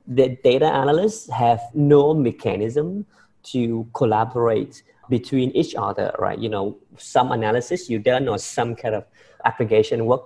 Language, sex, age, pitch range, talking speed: English, male, 30-49, 110-150 Hz, 140 wpm